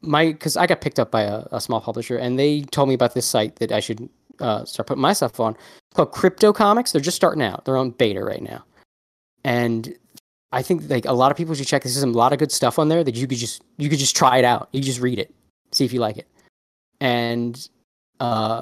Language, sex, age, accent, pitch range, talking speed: English, male, 20-39, American, 120-160 Hz, 250 wpm